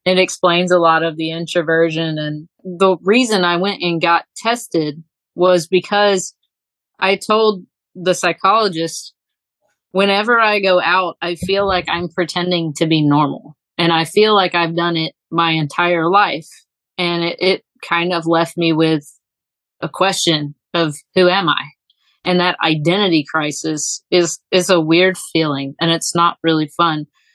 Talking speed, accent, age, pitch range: 160 wpm, American, 30-49, 160-185 Hz